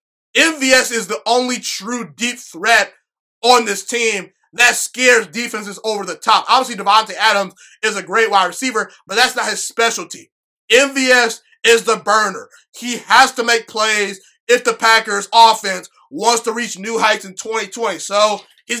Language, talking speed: English, 165 wpm